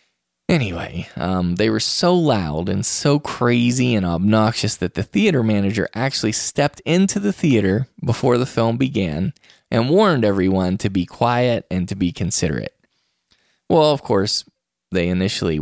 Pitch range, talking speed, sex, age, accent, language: 95-125 Hz, 150 wpm, male, 20-39, American, English